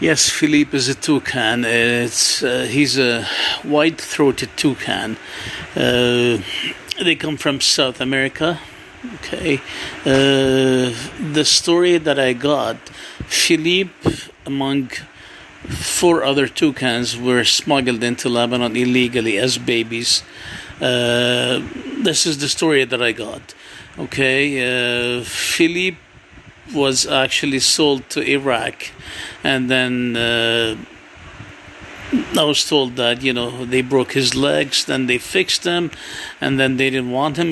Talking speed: 120 wpm